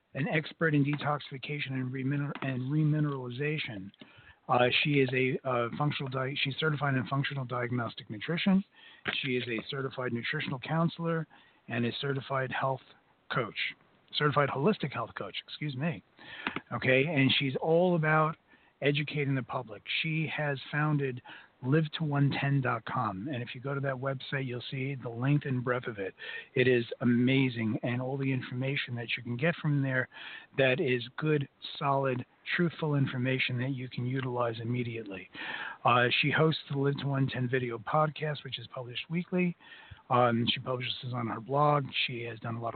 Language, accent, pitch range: English, American, 125-150 Hz